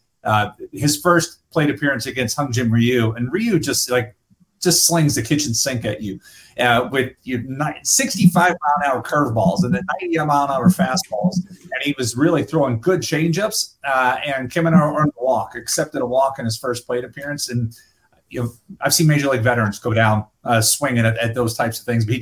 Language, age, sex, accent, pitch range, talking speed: English, 30-49, male, American, 120-150 Hz, 205 wpm